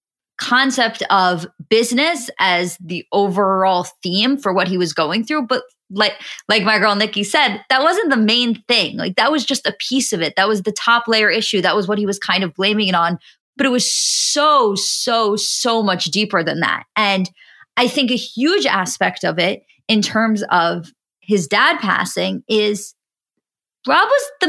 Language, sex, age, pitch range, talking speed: English, female, 20-39, 195-255 Hz, 190 wpm